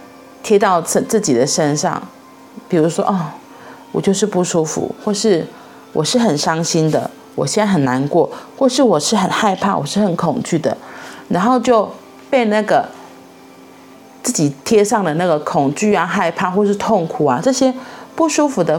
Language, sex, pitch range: Chinese, female, 165-225 Hz